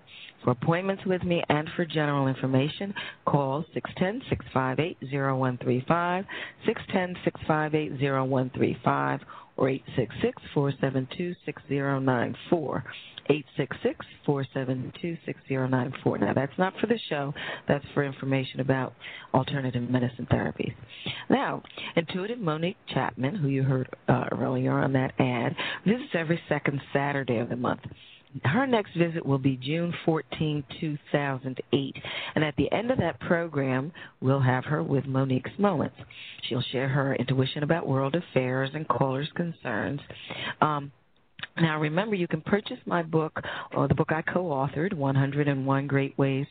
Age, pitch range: 40-59, 130-165 Hz